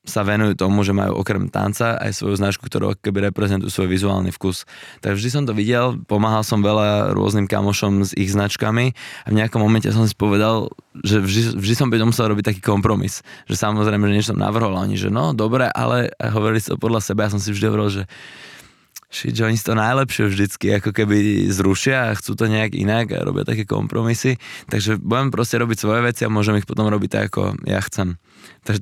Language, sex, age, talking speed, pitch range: Slovak, male, 20-39, 215 wpm, 100-110 Hz